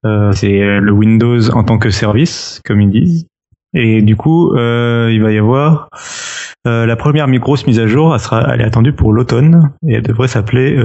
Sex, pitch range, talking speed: male, 105-125 Hz, 205 wpm